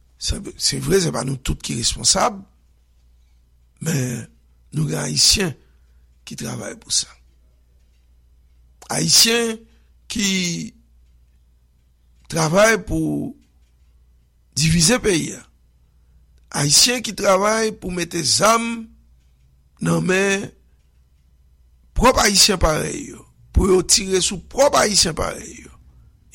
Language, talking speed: English, 90 wpm